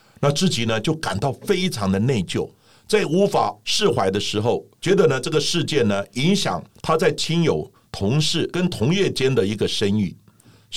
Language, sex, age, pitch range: Chinese, male, 60-79, 105-165 Hz